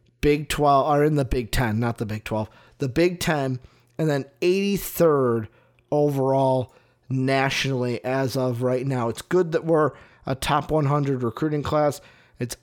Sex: male